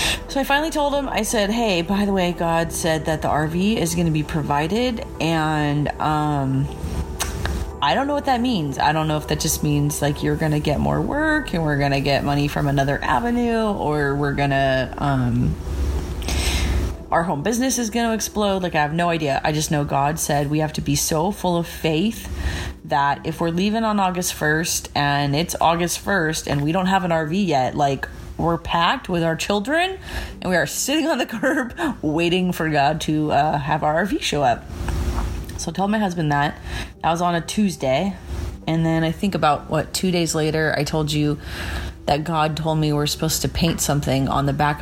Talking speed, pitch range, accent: 210 wpm, 140-180 Hz, American